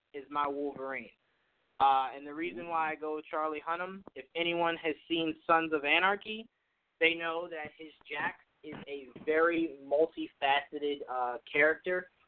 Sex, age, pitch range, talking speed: male, 20-39, 140-190 Hz, 145 wpm